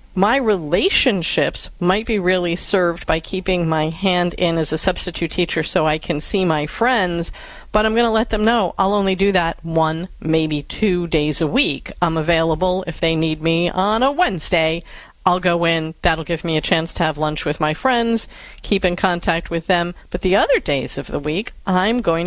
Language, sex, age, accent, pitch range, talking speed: English, female, 40-59, American, 160-200 Hz, 200 wpm